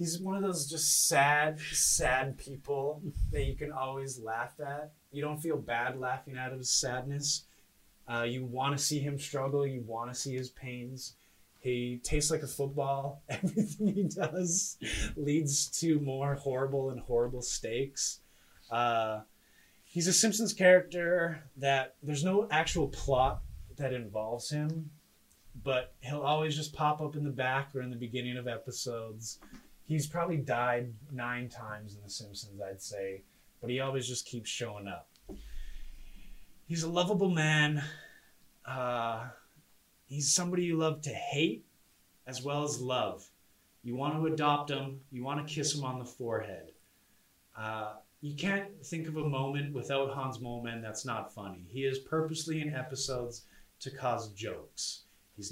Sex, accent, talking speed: male, American, 160 wpm